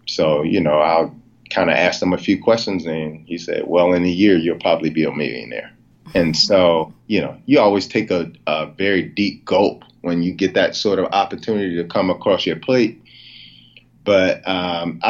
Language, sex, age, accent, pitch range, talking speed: English, male, 30-49, American, 95-110 Hz, 195 wpm